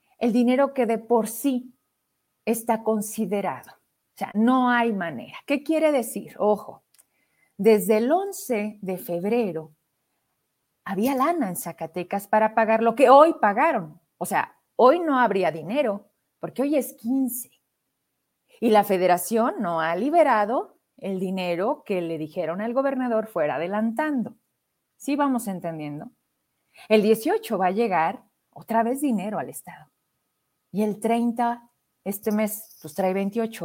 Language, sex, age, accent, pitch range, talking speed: Spanish, female, 40-59, Mexican, 185-235 Hz, 140 wpm